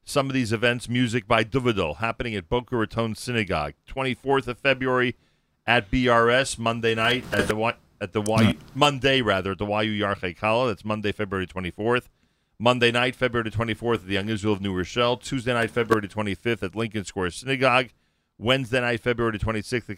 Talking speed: 175 wpm